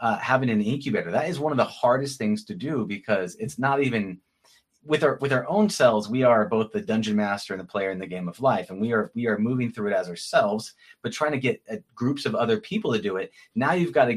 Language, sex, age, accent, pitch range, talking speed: English, male, 30-49, American, 105-140 Hz, 265 wpm